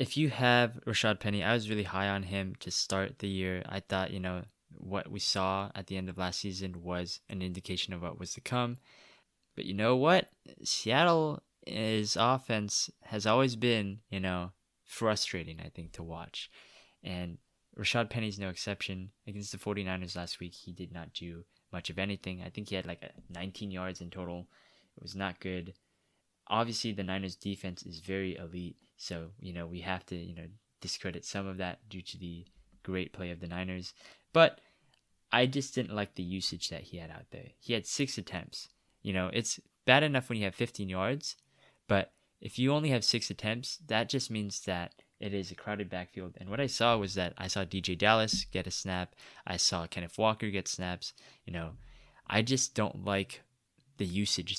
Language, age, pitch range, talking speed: English, 20-39, 90-110 Hz, 195 wpm